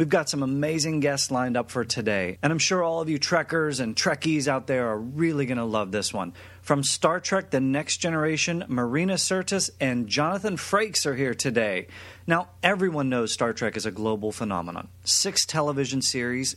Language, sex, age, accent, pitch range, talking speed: English, male, 30-49, American, 120-165 Hz, 190 wpm